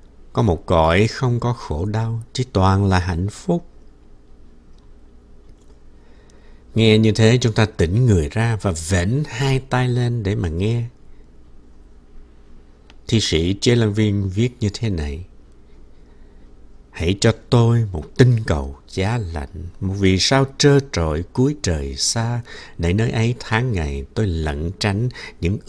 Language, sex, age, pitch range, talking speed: Vietnamese, male, 60-79, 75-115 Hz, 140 wpm